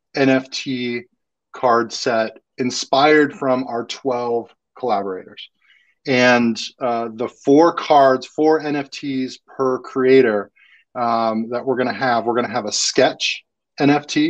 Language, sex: English, male